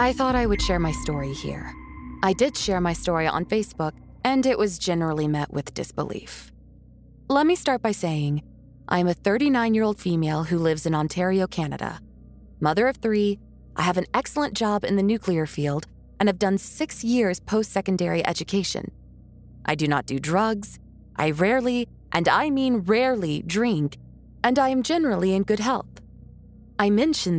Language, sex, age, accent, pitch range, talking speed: English, female, 20-39, American, 155-220 Hz, 170 wpm